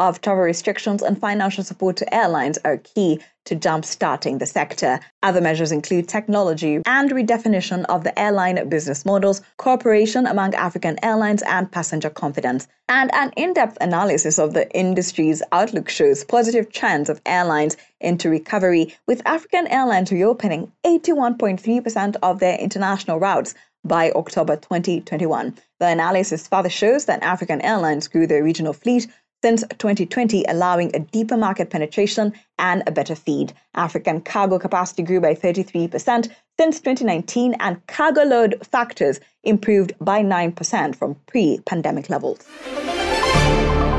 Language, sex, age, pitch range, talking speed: English, female, 20-39, 165-230 Hz, 135 wpm